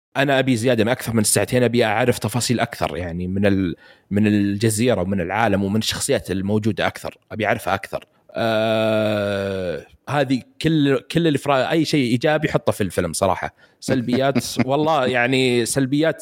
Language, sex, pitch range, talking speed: Arabic, male, 110-130 Hz, 145 wpm